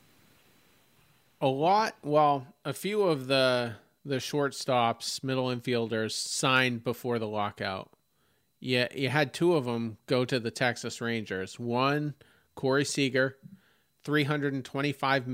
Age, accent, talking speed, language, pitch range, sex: 40-59, American, 115 wpm, English, 115-145 Hz, male